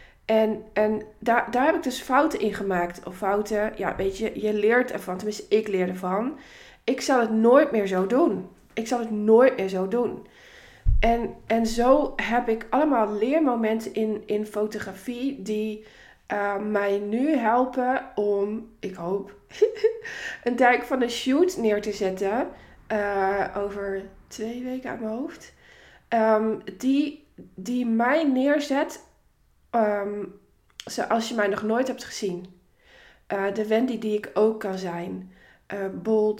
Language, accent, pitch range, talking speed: Dutch, Dutch, 195-235 Hz, 150 wpm